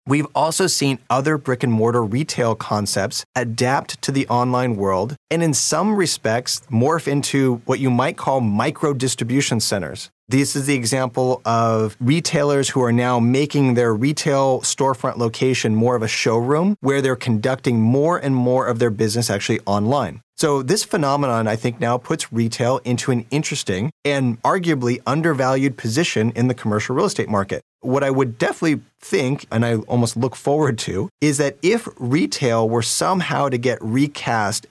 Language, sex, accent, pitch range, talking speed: English, male, American, 115-140 Hz, 170 wpm